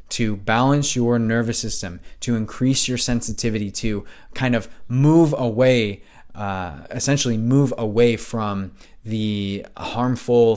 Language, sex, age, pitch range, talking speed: English, male, 20-39, 105-120 Hz, 120 wpm